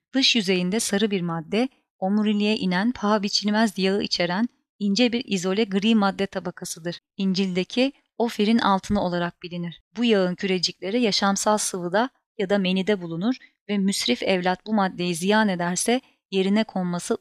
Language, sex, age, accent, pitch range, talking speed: Turkish, female, 30-49, native, 180-215 Hz, 140 wpm